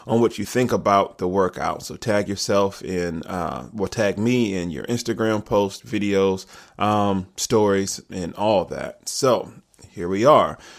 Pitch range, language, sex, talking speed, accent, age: 95-105 Hz, English, male, 160 wpm, American, 20-39